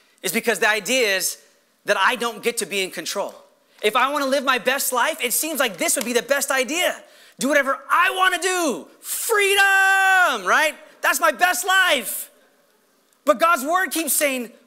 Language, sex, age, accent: English, male, 30-49, American